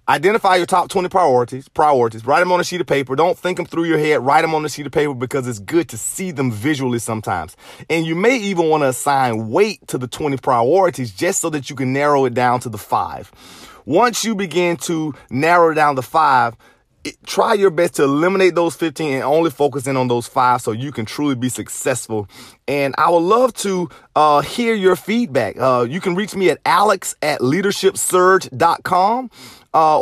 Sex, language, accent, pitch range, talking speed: male, English, American, 140-190 Hz, 210 wpm